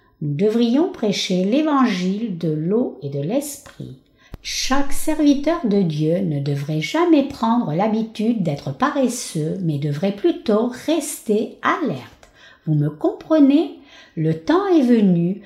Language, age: French, 60-79